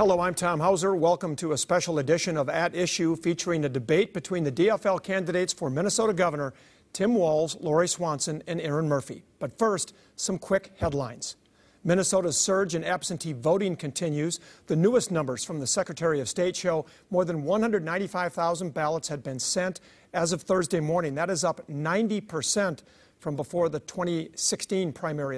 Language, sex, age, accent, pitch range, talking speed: English, male, 50-69, American, 155-180 Hz, 165 wpm